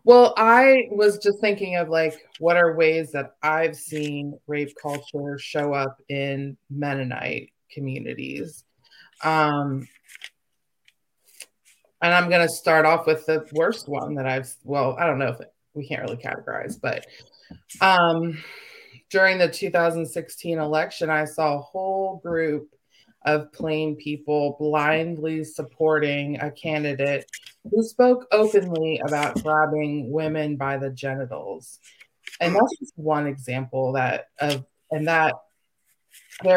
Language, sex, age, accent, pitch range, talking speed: English, female, 20-39, American, 145-175 Hz, 130 wpm